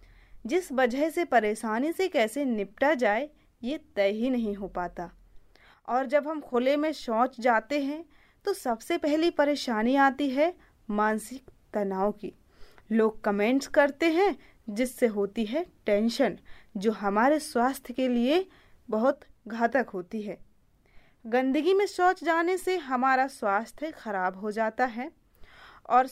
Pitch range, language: 210-290 Hz, English